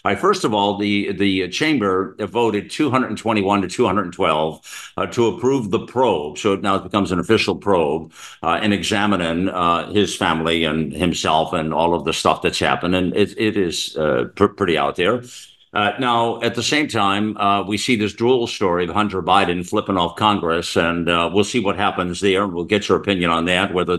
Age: 60-79